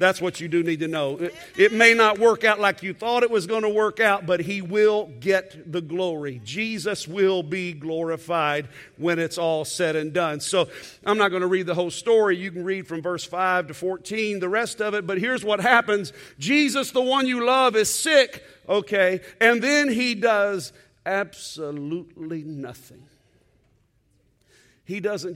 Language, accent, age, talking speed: English, American, 50-69, 185 wpm